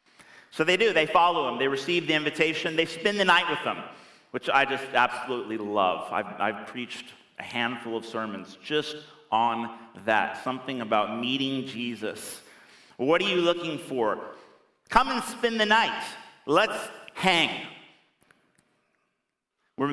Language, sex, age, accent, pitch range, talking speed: English, male, 30-49, American, 120-170 Hz, 145 wpm